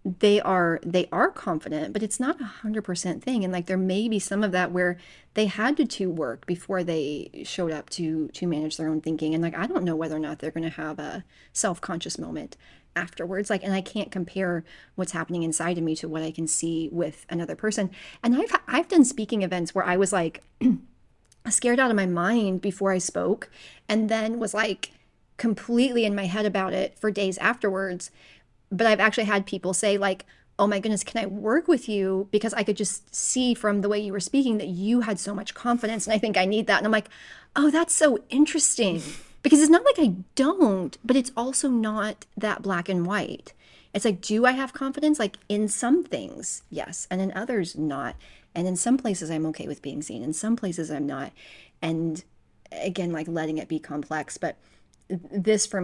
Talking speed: 215 wpm